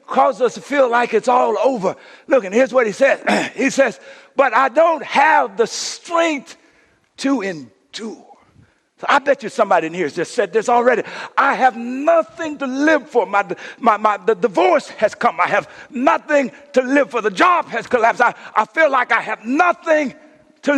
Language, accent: English, American